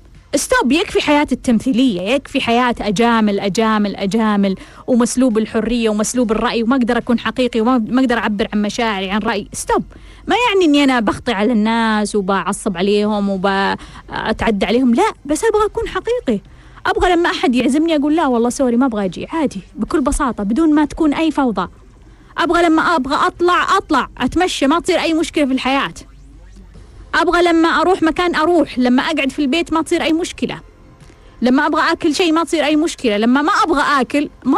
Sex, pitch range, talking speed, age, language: female, 230-325 Hz, 170 wpm, 20-39, Arabic